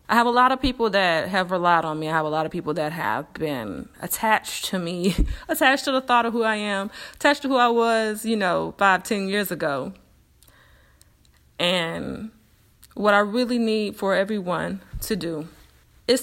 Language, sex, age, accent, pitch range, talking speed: English, female, 20-39, American, 170-240 Hz, 190 wpm